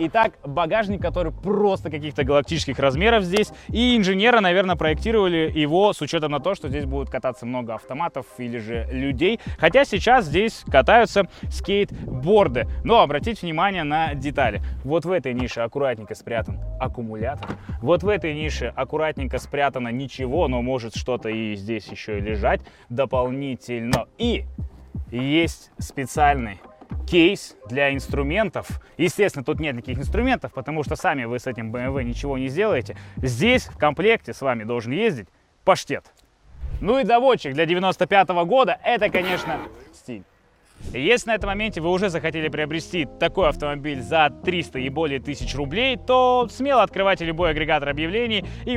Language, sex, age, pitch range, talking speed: Russian, male, 20-39, 125-190 Hz, 150 wpm